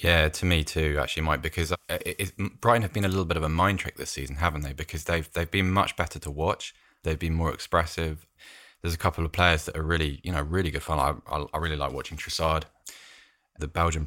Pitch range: 80-95 Hz